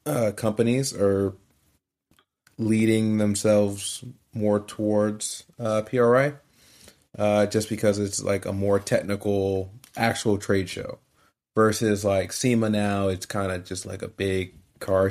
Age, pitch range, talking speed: 20-39, 100-115 Hz, 125 wpm